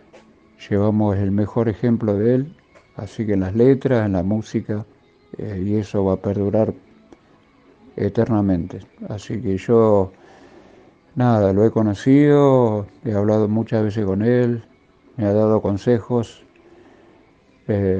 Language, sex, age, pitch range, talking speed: Spanish, male, 60-79, 100-115 Hz, 130 wpm